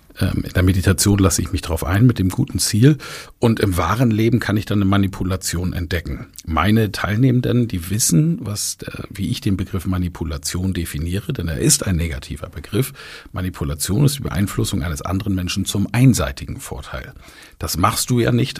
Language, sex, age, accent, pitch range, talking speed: German, male, 50-69, German, 95-125 Hz, 175 wpm